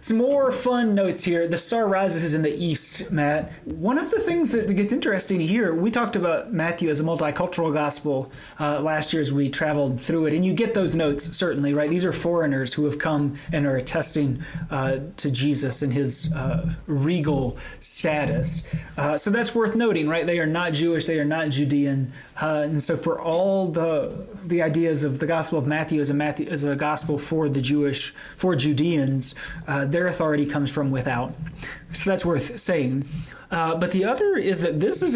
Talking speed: 200 wpm